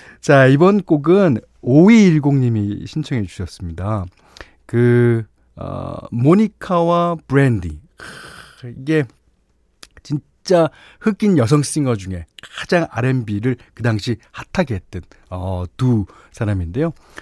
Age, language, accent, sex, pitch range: 40-59, Korean, native, male, 100-160 Hz